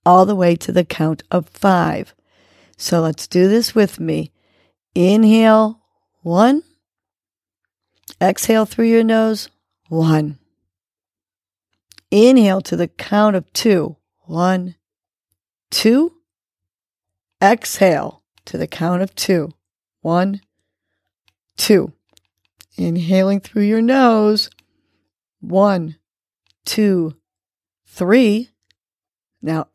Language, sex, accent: English, female, American